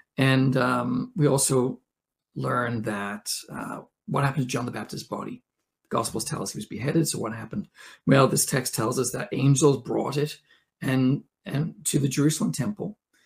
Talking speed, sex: 175 wpm, male